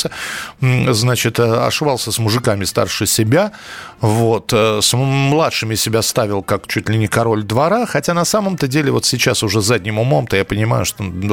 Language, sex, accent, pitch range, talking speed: Russian, male, native, 115-165 Hz, 160 wpm